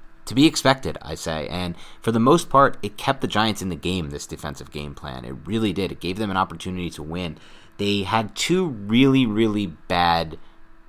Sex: male